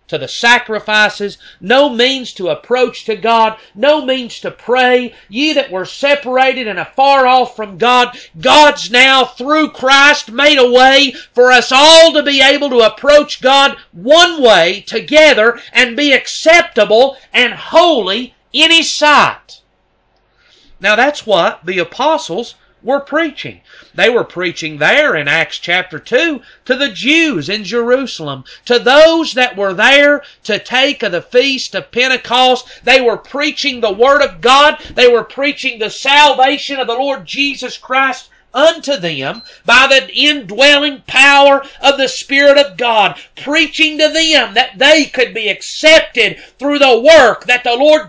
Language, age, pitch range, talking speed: English, 40-59, 225-285 Hz, 155 wpm